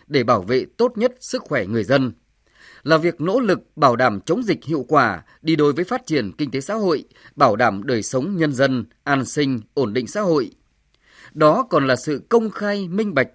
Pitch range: 125-185 Hz